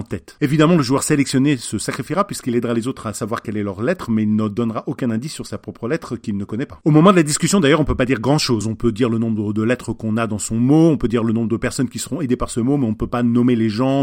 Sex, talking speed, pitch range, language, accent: male, 325 wpm, 115-165 Hz, French, French